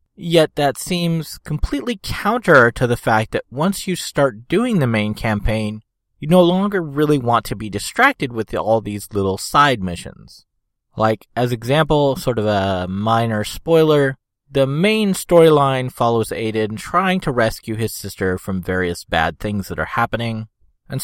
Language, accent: English, American